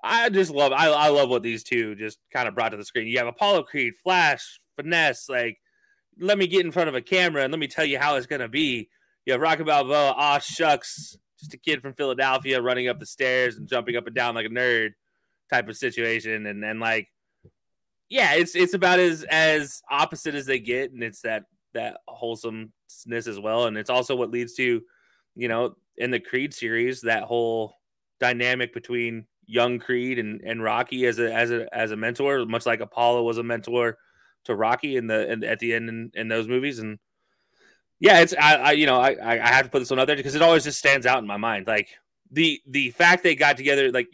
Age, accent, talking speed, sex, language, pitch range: 20-39, American, 225 wpm, male, English, 115-145 Hz